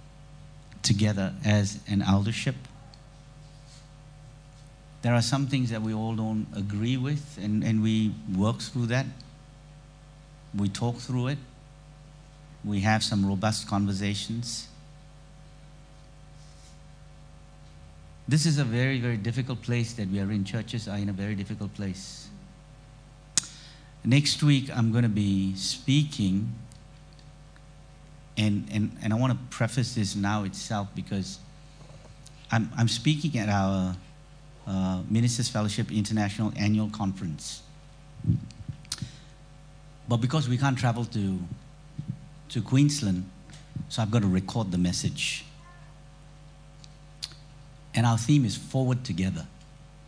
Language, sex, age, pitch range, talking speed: English, male, 50-69, 105-145 Hz, 115 wpm